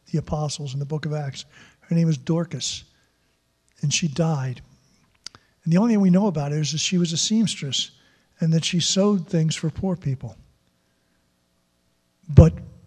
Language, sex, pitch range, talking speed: English, male, 135-175 Hz, 175 wpm